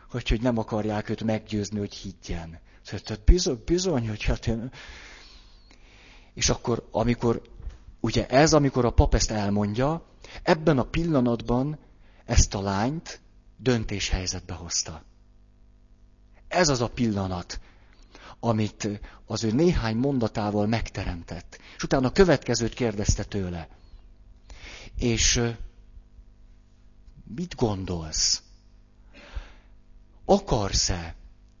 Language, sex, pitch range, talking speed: Hungarian, male, 95-115 Hz, 100 wpm